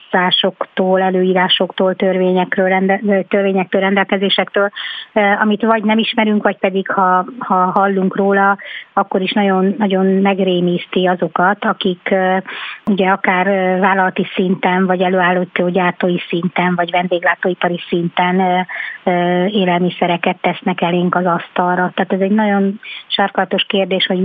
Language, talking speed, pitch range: Hungarian, 110 wpm, 185-205 Hz